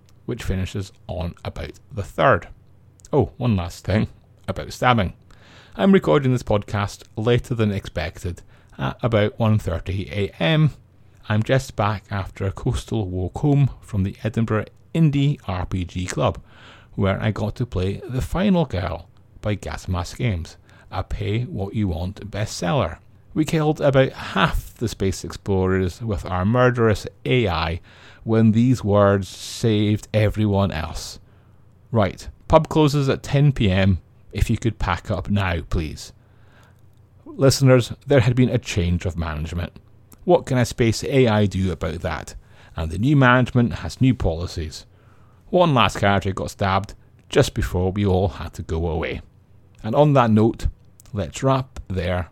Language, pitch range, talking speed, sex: English, 95-120 Hz, 145 wpm, male